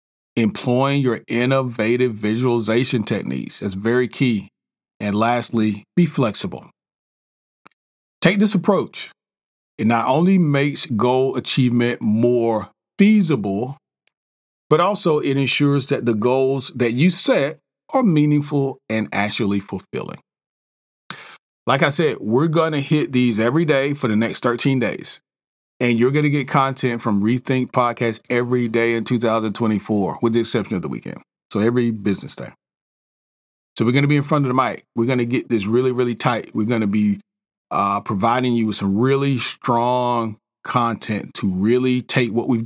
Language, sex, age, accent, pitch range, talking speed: English, male, 40-59, American, 115-140 Hz, 155 wpm